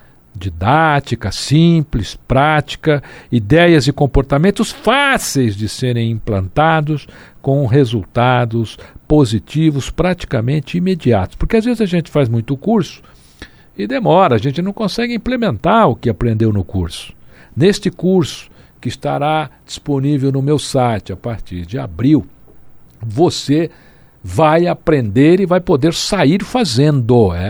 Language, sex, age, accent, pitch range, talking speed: Portuguese, male, 60-79, Brazilian, 110-160 Hz, 120 wpm